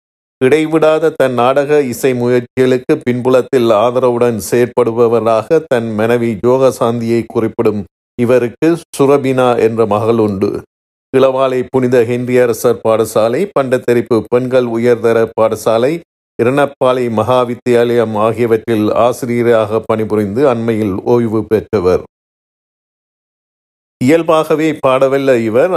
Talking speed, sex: 85 wpm, male